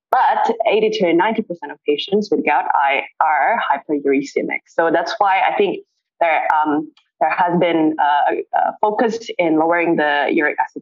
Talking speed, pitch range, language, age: 160 wpm, 160-220 Hz, English, 20-39